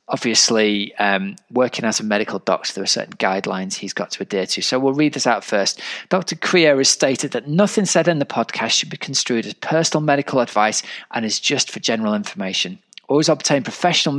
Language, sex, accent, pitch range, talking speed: English, male, British, 110-145 Hz, 205 wpm